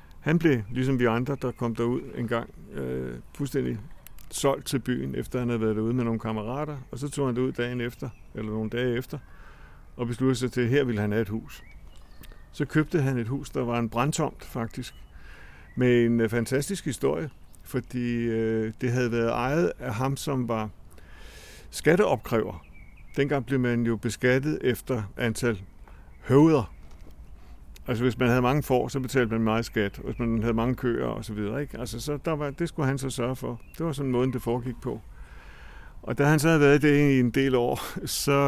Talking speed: 200 wpm